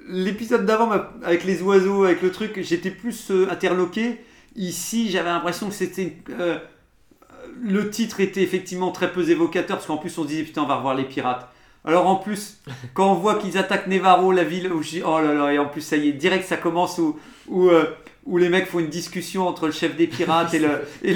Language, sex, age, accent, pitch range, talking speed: French, male, 40-59, French, 155-190 Hz, 225 wpm